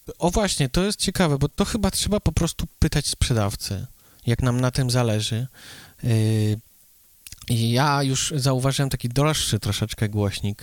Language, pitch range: Polish, 115-150 Hz